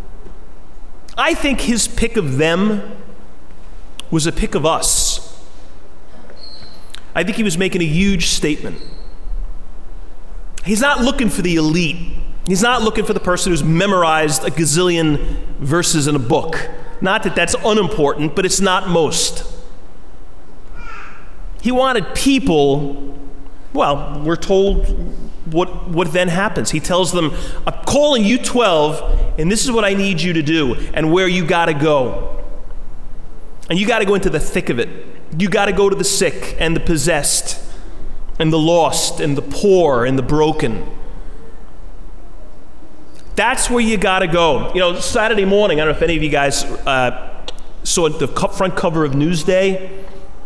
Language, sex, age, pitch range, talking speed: English, male, 30-49, 155-195 Hz, 155 wpm